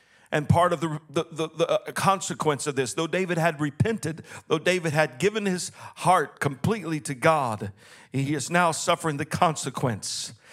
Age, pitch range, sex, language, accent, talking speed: 50-69, 145-235 Hz, male, English, American, 165 wpm